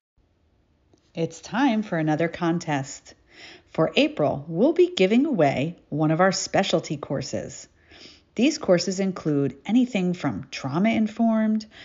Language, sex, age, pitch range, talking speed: English, female, 40-59, 155-250 Hz, 110 wpm